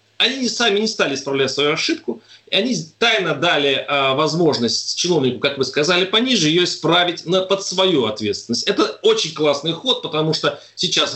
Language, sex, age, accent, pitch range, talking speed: Russian, male, 30-49, native, 145-215 Hz, 165 wpm